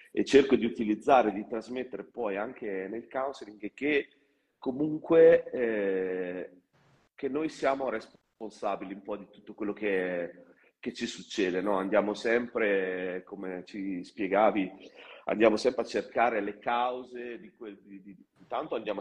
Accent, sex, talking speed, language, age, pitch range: native, male, 140 wpm, Italian, 40-59, 100-130 Hz